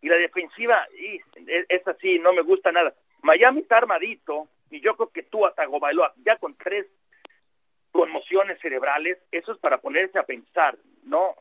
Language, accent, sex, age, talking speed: Spanish, Mexican, male, 40-59, 170 wpm